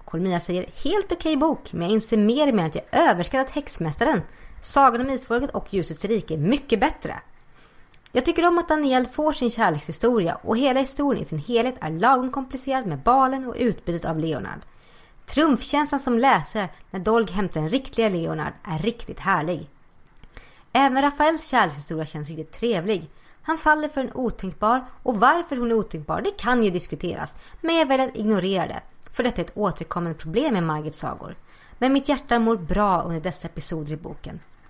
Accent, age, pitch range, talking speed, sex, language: native, 30-49, 180-270 Hz, 175 wpm, female, Swedish